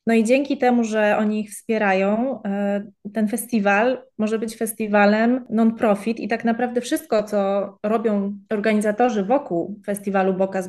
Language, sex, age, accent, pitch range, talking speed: Polish, female, 20-39, native, 200-235 Hz, 135 wpm